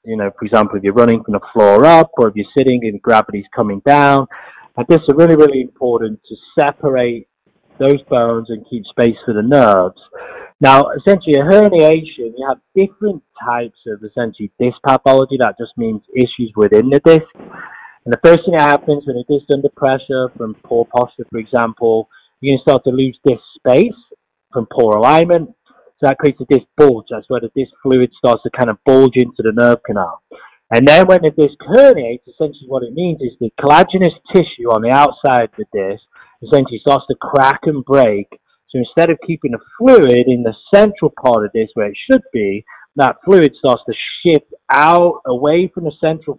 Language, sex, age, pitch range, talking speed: English, male, 30-49, 120-155 Hz, 200 wpm